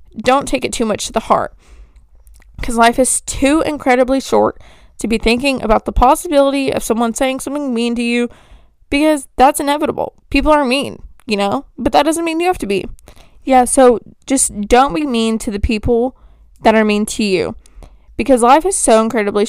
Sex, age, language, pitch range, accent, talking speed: female, 20-39, English, 210-265 Hz, American, 190 wpm